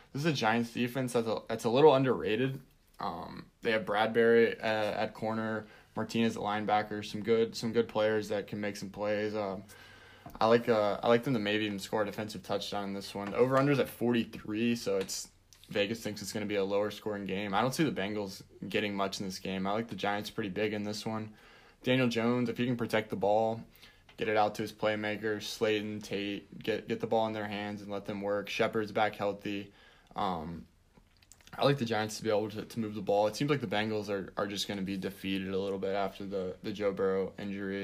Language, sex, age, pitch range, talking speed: English, male, 20-39, 100-110 Hz, 235 wpm